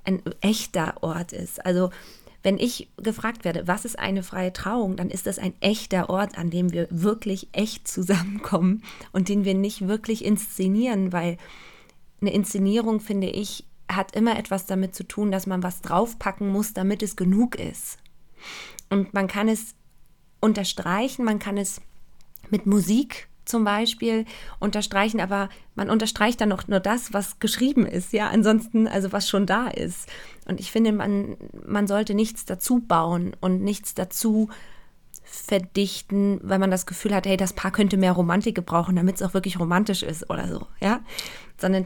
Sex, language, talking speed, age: female, German, 170 wpm, 20-39